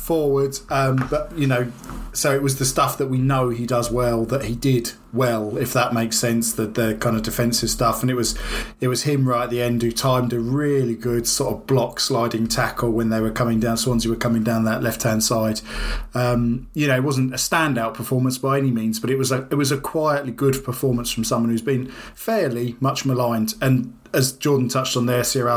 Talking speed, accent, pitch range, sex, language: 230 wpm, British, 120-140 Hz, male, English